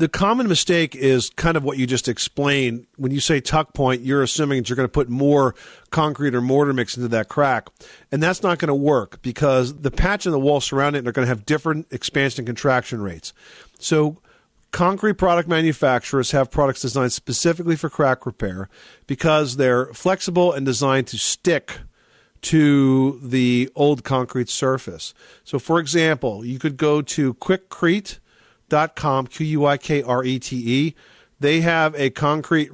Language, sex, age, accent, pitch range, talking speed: English, male, 50-69, American, 125-155 Hz, 165 wpm